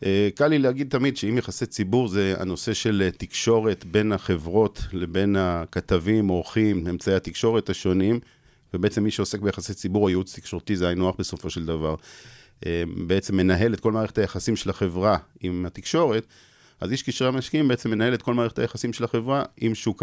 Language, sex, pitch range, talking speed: Hebrew, male, 95-115 Hz, 170 wpm